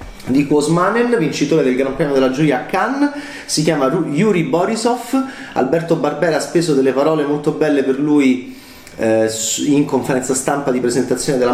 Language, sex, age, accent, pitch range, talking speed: Italian, male, 30-49, native, 130-165 Hz, 165 wpm